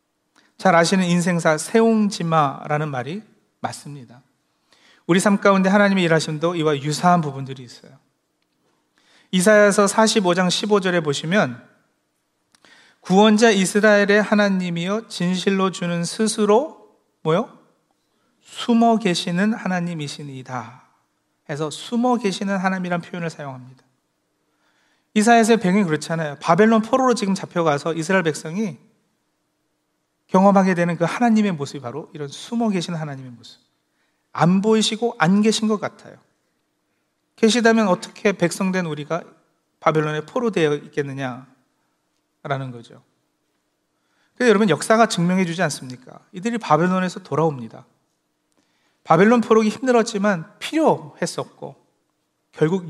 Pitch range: 150-210 Hz